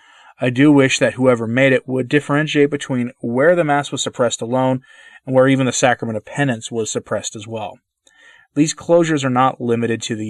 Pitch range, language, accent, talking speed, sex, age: 120-155 Hz, English, American, 200 wpm, male, 30-49